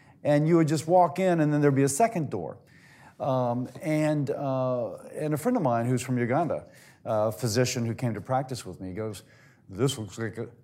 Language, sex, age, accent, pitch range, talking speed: English, male, 40-59, American, 130-170 Hz, 210 wpm